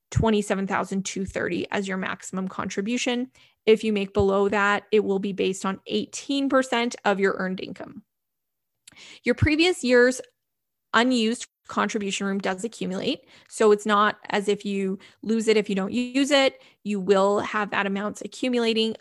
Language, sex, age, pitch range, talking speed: English, female, 20-39, 200-240 Hz, 150 wpm